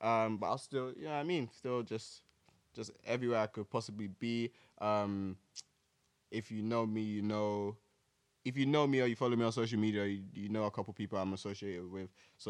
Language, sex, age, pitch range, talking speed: English, male, 20-39, 100-120 Hz, 215 wpm